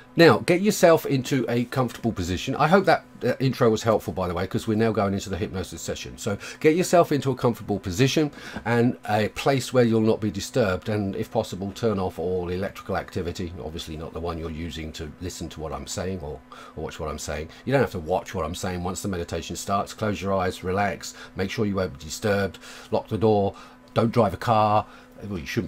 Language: English